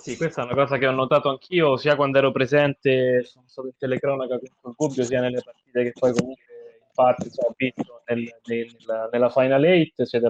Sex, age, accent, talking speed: male, 20-39, native, 215 wpm